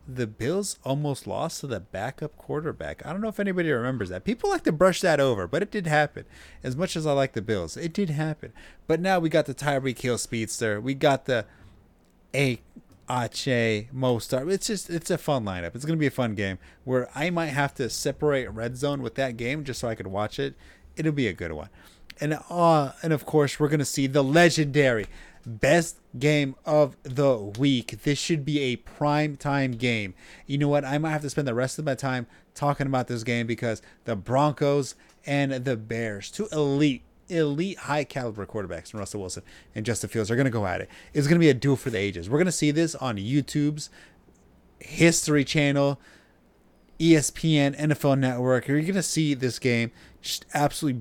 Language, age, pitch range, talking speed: English, 30-49, 120-150 Hz, 200 wpm